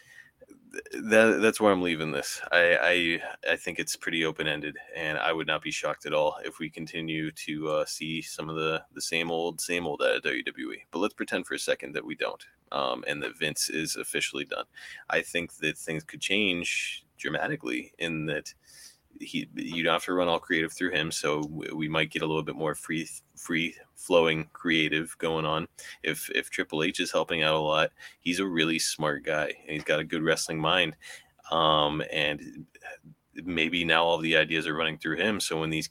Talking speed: 205 wpm